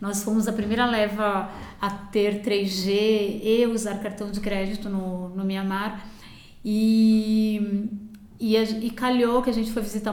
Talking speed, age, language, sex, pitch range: 150 wpm, 20-39, Portuguese, female, 200-230 Hz